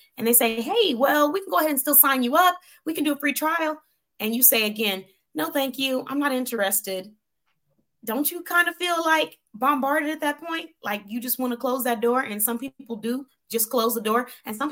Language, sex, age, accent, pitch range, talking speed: English, female, 20-39, American, 190-250 Hz, 235 wpm